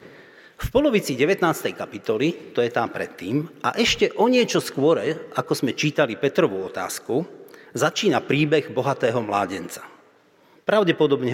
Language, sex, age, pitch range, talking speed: Slovak, male, 40-59, 130-160 Hz, 120 wpm